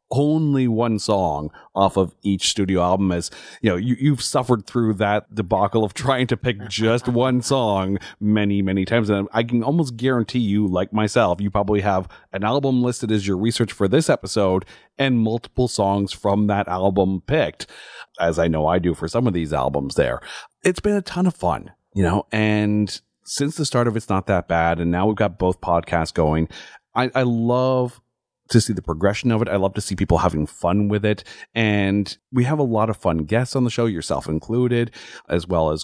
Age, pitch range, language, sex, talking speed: 40-59, 90-115 Hz, English, male, 205 wpm